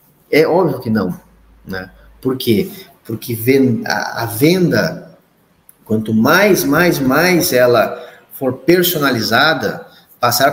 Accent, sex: Brazilian, male